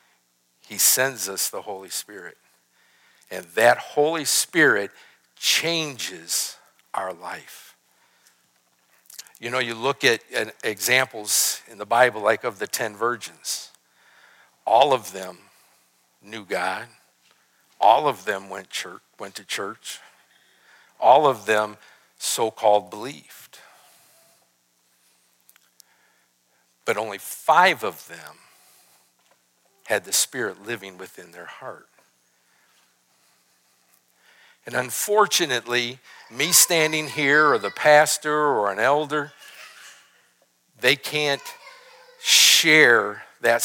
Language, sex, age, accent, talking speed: English, male, 60-79, American, 95 wpm